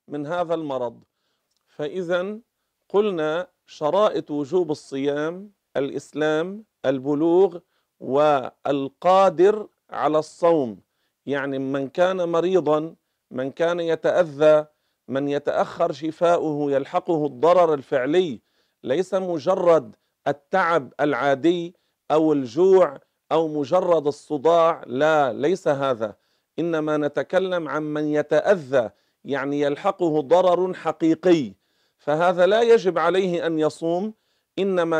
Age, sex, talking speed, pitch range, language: 40-59, male, 95 wpm, 150-180 Hz, Arabic